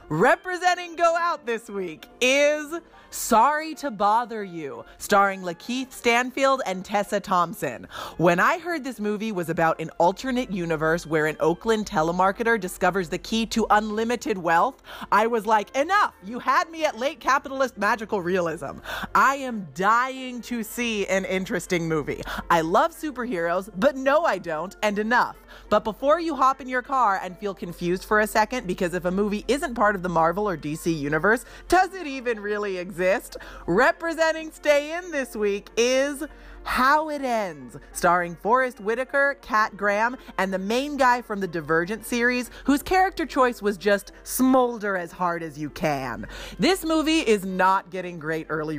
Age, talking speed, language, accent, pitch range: 30-49, 165 wpm, English, American, 180-260 Hz